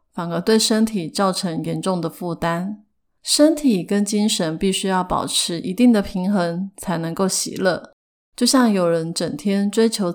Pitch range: 180-225 Hz